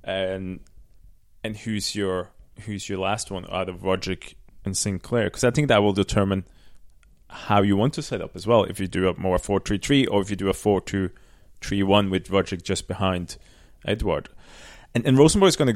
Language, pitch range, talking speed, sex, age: English, 95-115 Hz, 200 wpm, male, 20-39